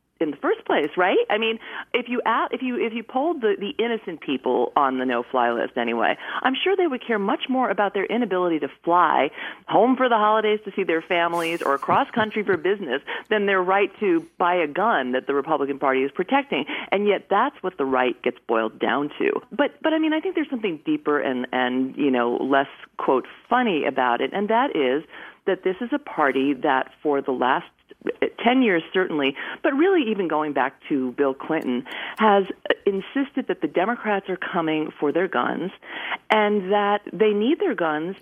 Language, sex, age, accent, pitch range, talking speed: English, female, 40-59, American, 150-235 Hz, 205 wpm